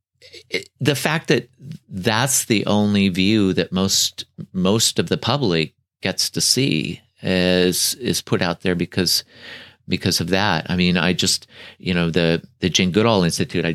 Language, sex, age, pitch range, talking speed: English, male, 40-59, 90-115 Hz, 165 wpm